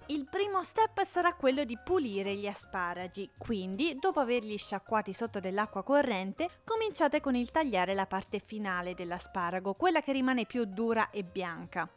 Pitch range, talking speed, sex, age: 210-310 Hz, 155 wpm, female, 30-49